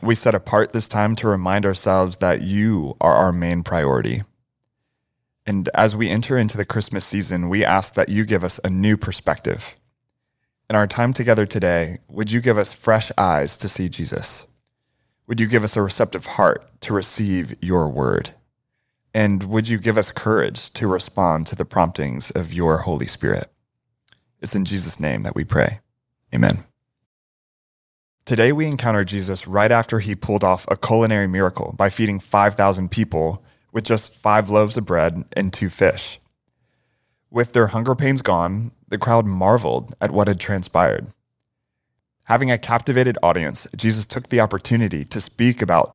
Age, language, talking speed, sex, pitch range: 30-49, English, 165 wpm, male, 95-115 Hz